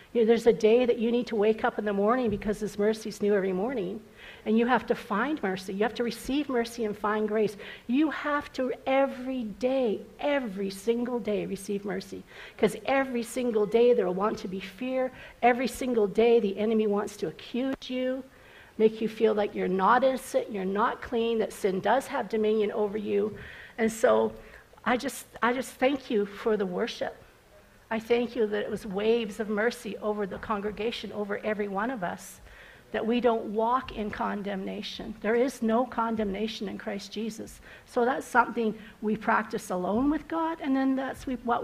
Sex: female